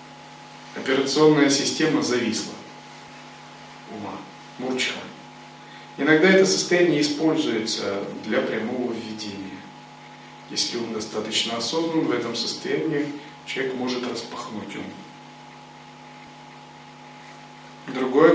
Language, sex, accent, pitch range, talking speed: Russian, male, native, 105-140 Hz, 80 wpm